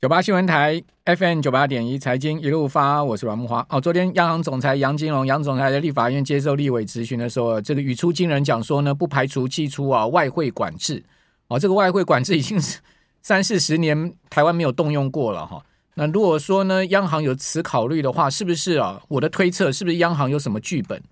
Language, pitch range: Chinese, 130-175 Hz